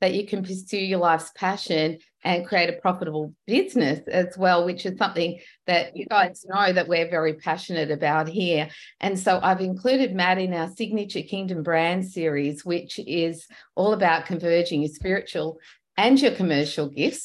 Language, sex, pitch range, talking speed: English, female, 170-210 Hz, 170 wpm